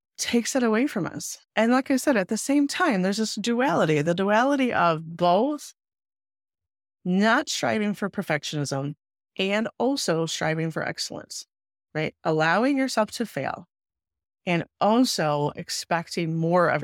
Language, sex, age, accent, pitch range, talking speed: English, female, 30-49, American, 150-215 Hz, 140 wpm